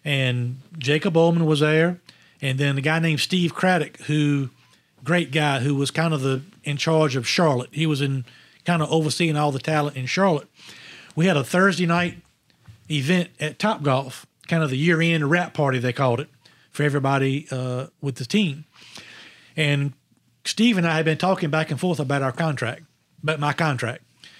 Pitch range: 135-165 Hz